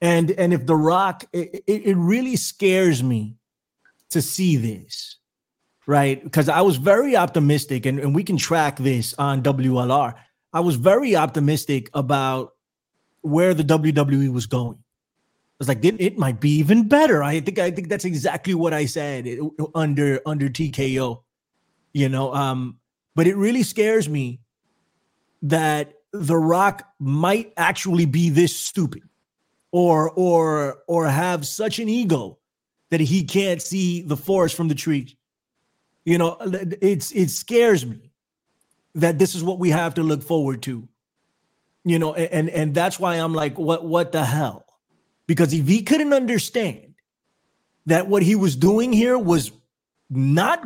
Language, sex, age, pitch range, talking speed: English, male, 30-49, 140-185 Hz, 155 wpm